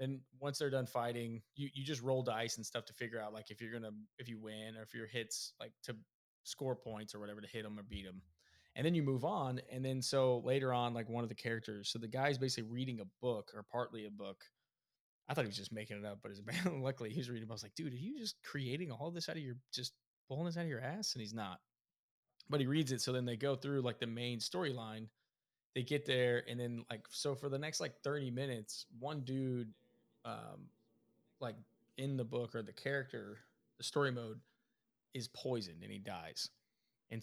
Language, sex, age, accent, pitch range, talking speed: English, male, 20-39, American, 115-135 Hz, 240 wpm